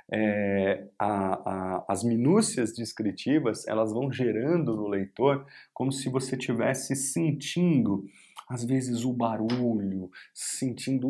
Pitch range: 105-135 Hz